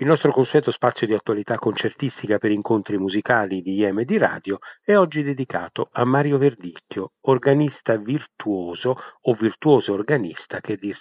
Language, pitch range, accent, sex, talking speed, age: Italian, 100-125 Hz, native, male, 155 wpm, 40-59